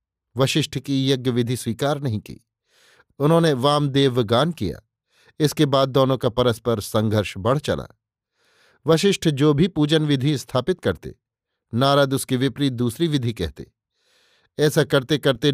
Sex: male